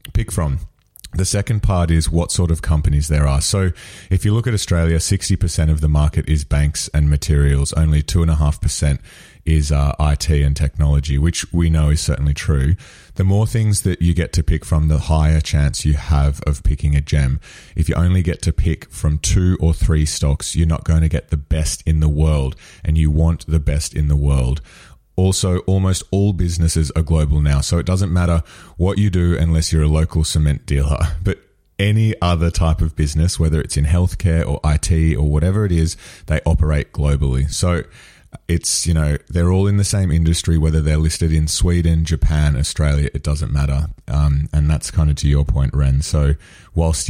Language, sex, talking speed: English, male, 200 wpm